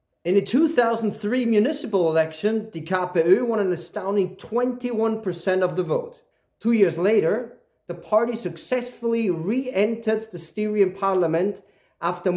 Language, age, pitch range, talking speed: English, 40-59, 180-220 Hz, 120 wpm